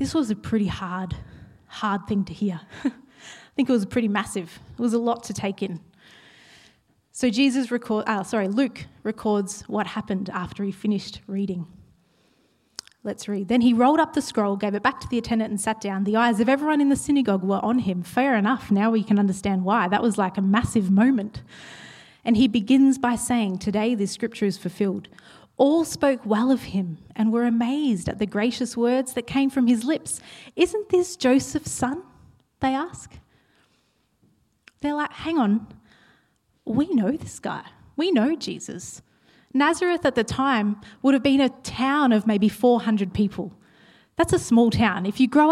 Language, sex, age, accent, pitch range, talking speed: English, female, 20-39, Australian, 205-270 Hz, 185 wpm